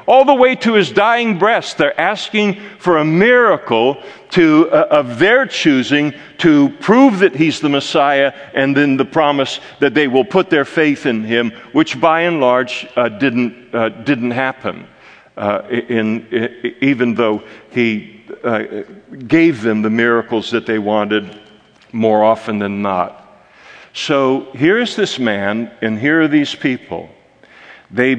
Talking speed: 150 wpm